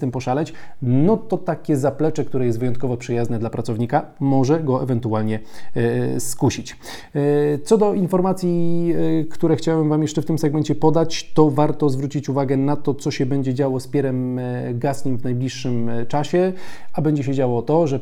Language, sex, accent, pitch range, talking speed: Polish, male, native, 125-150 Hz, 165 wpm